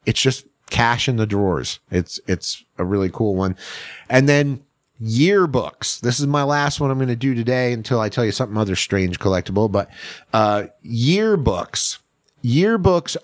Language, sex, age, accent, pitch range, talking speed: English, male, 30-49, American, 110-140 Hz, 170 wpm